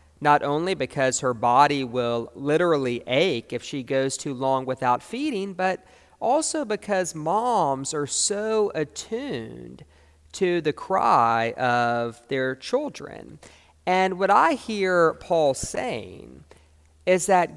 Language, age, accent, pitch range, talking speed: English, 40-59, American, 115-165 Hz, 125 wpm